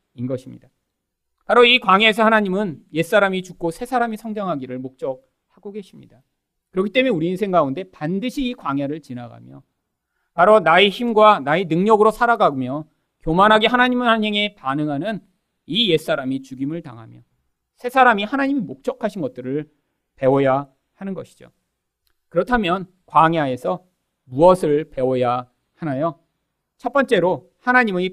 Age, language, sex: 40-59, Korean, male